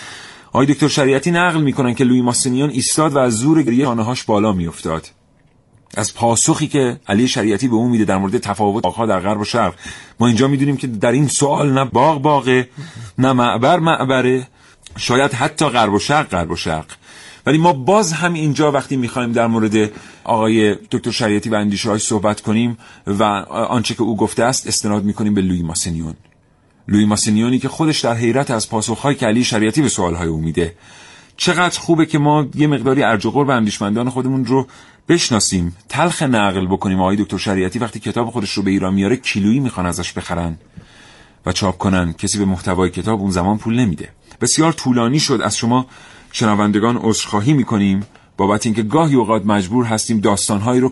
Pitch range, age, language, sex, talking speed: 100-135 Hz, 40-59, Persian, male, 175 wpm